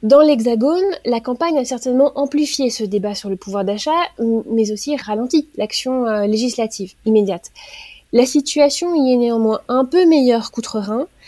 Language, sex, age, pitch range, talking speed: French, female, 20-39, 220-280 Hz, 150 wpm